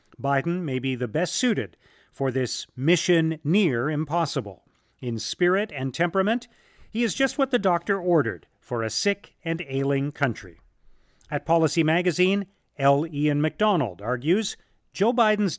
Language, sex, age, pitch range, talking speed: English, male, 40-59, 135-195 Hz, 140 wpm